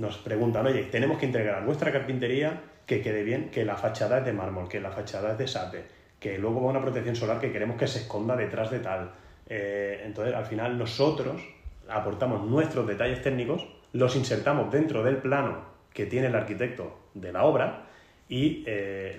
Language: Spanish